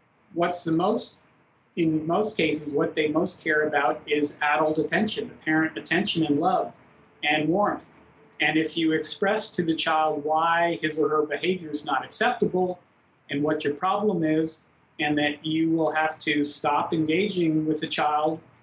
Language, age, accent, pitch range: English, 40-59, American, 150-165 Hz